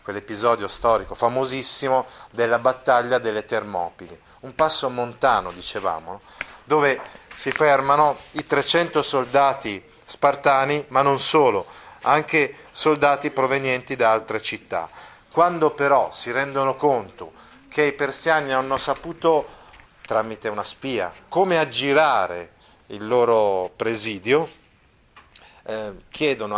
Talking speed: 105 wpm